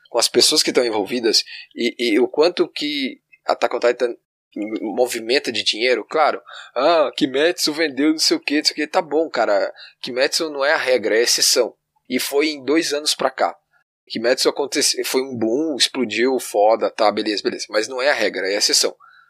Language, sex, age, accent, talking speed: Portuguese, male, 10-29, Brazilian, 190 wpm